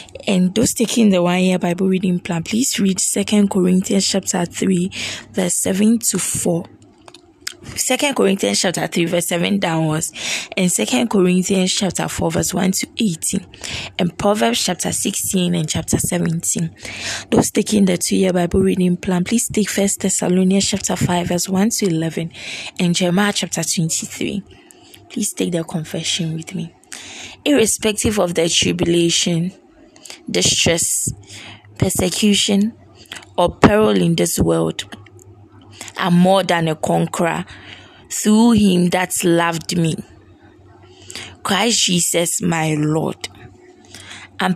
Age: 20-39